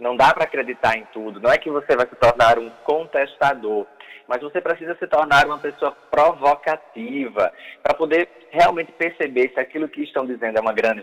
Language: Portuguese